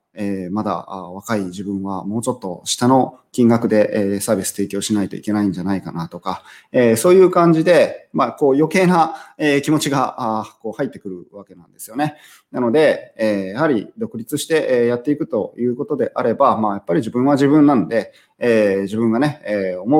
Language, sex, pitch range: Japanese, male, 100-145 Hz